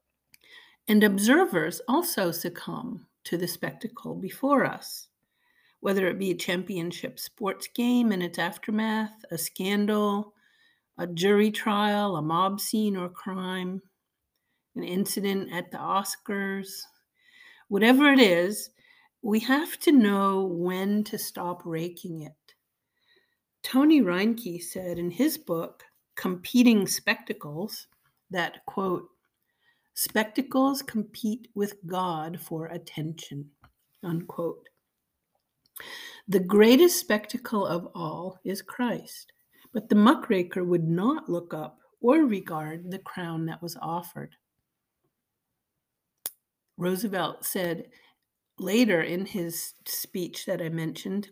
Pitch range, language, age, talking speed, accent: 175-245 Hz, English, 50-69, 110 wpm, American